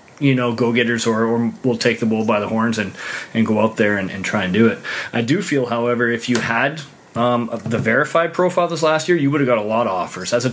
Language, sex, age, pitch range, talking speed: English, male, 20-39, 105-130 Hz, 270 wpm